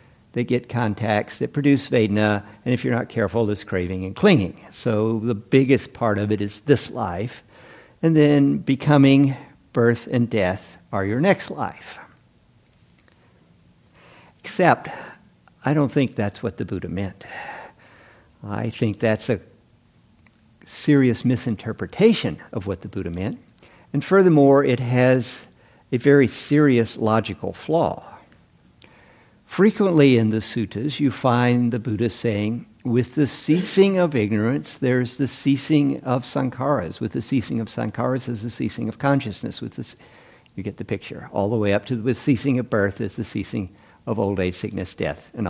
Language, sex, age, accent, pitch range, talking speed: English, male, 60-79, American, 105-140 Hz, 155 wpm